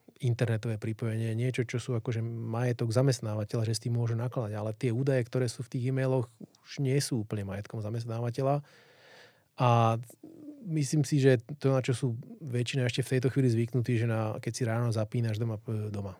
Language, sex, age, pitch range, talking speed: Slovak, male, 30-49, 115-125 Hz, 180 wpm